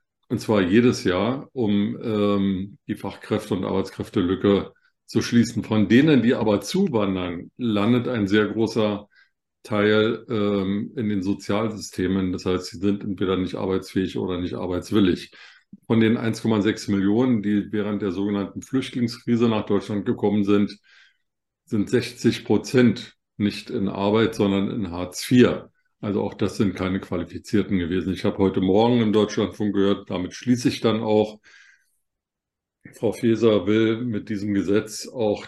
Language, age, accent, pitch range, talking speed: German, 50-69, German, 100-115 Hz, 145 wpm